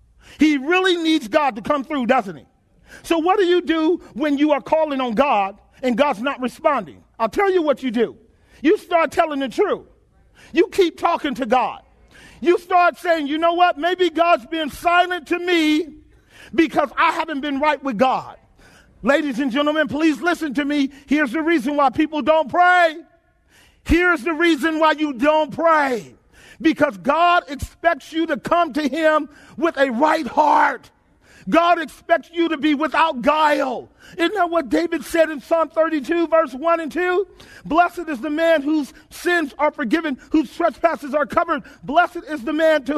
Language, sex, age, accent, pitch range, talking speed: English, male, 40-59, American, 285-335 Hz, 180 wpm